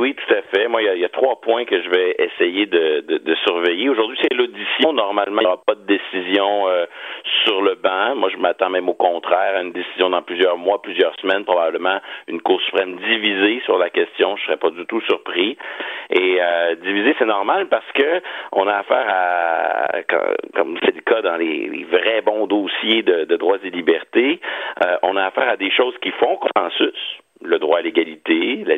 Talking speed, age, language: 220 wpm, 50-69, French